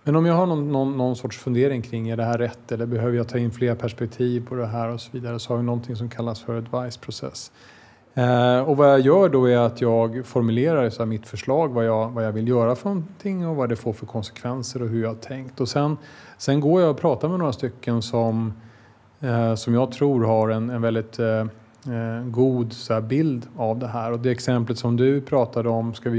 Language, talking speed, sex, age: Swedish, 240 wpm, male, 30-49